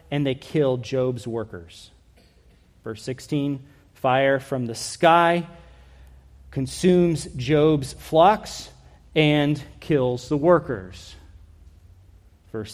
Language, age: English, 30-49